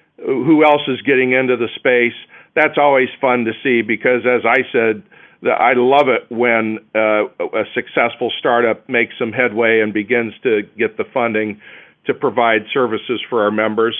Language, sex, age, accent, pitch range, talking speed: English, male, 50-69, American, 115-135 Hz, 170 wpm